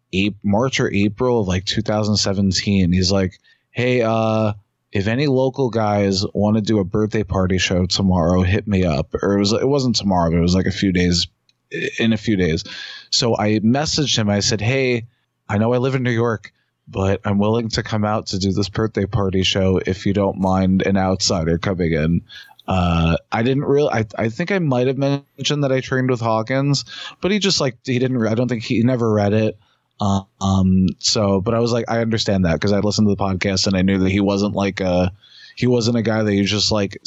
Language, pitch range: English, 95-115 Hz